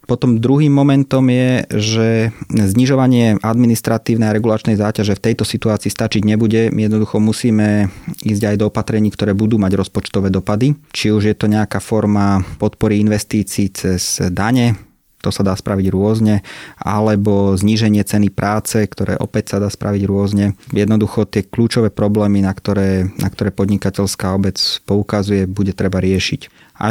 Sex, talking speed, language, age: male, 145 wpm, Slovak, 30-49